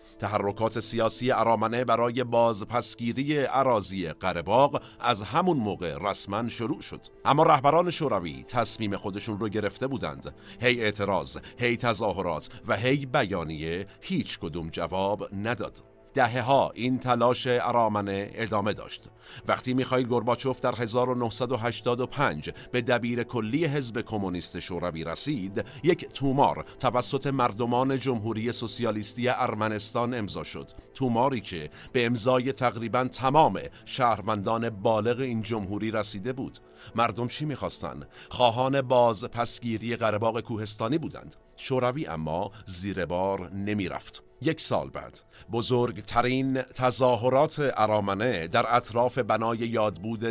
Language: Persian